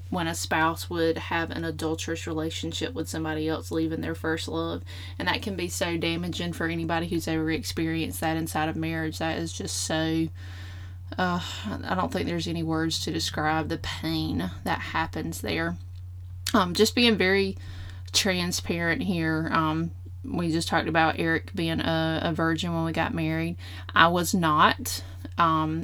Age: 20-39